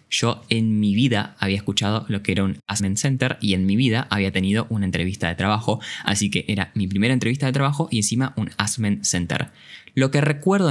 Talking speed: 215 wpm